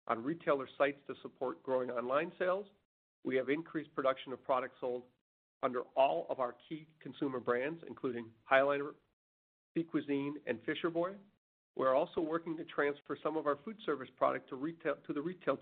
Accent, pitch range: American, 130-165 Hz